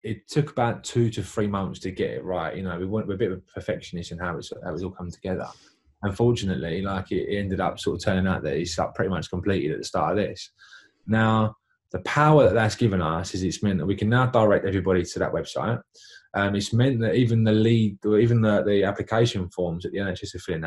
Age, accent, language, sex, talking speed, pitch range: 20-39, British, English, male, 245 wpm, 95-115 Hz